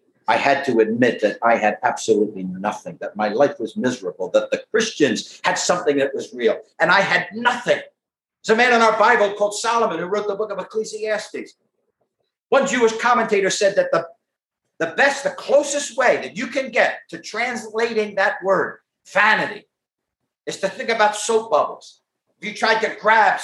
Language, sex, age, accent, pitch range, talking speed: English, male, 50-69, American, 210-285 Hz, 180 wpm